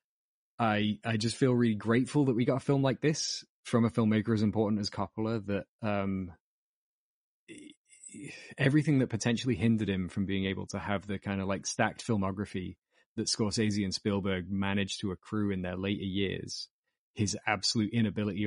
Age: 20-39